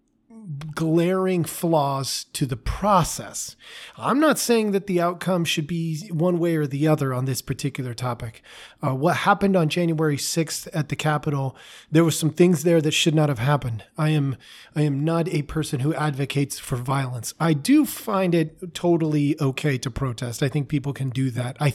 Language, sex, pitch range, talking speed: English, male, 135-175 Hz, 185 wpm